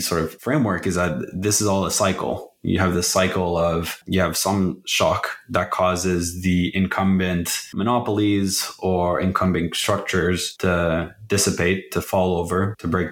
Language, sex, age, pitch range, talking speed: English, male, 20-39, 85-95 Hz, 155 wpm